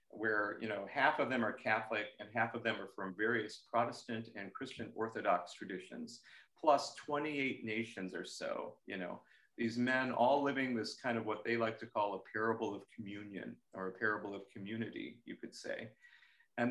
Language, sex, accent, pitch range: English, male, American, 115-145 Hz